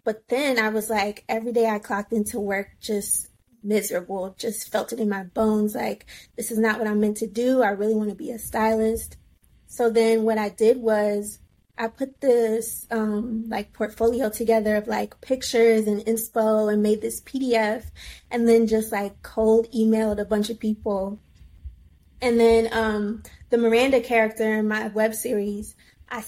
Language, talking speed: English, 175 wpm